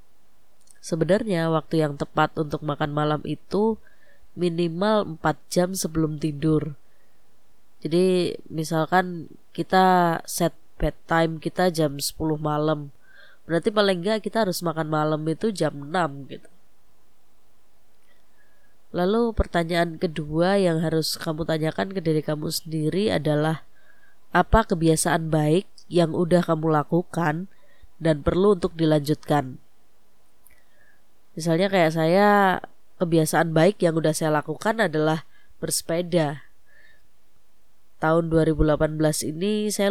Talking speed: 105 wpm